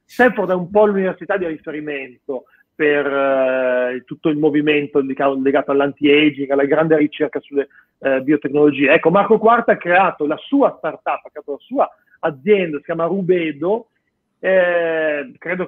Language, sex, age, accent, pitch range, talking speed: Italian, male, 40-59, native, 150-205 Hz, 145 wpm